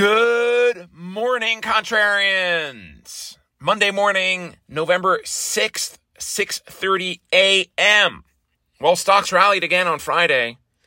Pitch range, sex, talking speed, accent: 115-150 Hz, male, 85 wpm, American